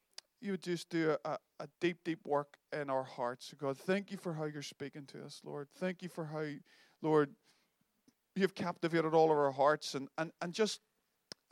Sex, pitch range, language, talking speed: male, 145-180 Hz, English, 195 wpm